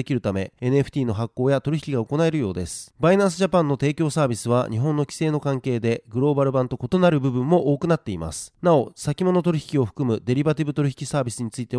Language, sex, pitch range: Japanese, male, 125-155 Hz